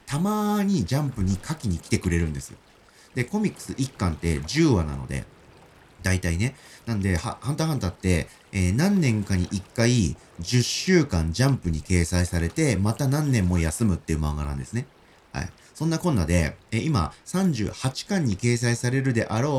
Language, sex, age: Japanese, male, 40-59